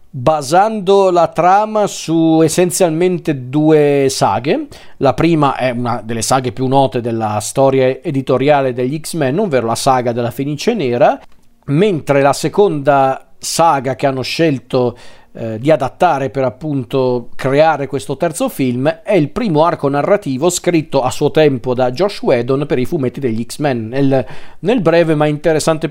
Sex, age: male, 40-59